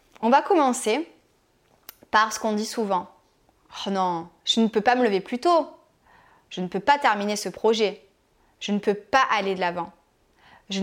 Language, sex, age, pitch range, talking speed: French, female, 20-39, 190-250 Hz, 185 wpm